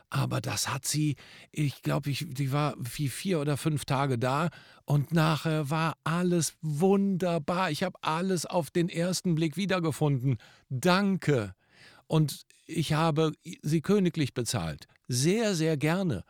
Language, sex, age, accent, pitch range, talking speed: German, male, 50-69, German, 120-165 Hz, 140 wpm